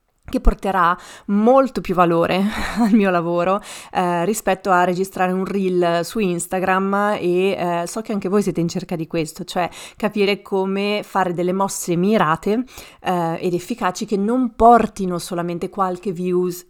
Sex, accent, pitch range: female, native, 175-200 Hz